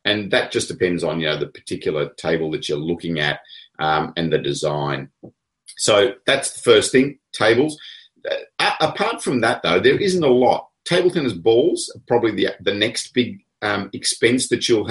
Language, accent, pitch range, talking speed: English, Australian, 90-130 Hz, 185 wpm